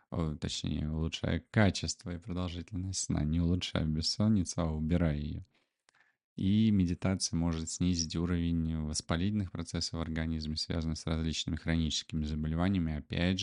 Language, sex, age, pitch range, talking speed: Russian, male, 30-49, 80-95 Hz, 120 wpm